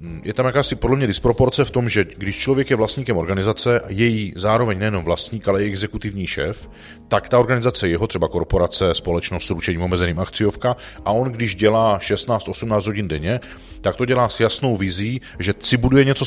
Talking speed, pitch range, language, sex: 185 wpm, 100-125 Hz, Czech, male